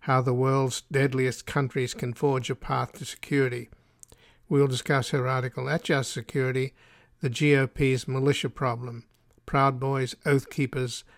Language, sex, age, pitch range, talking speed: English, male, 50-69, 130-145 Hz, 140 wpm